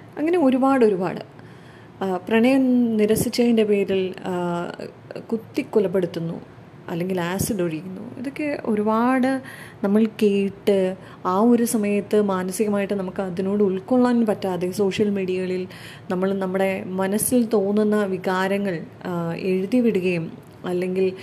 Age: 20-39